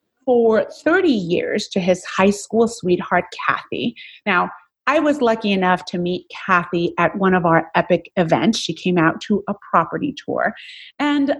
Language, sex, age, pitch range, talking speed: English, female, 30-49, 190-275 Hz, 165 wpm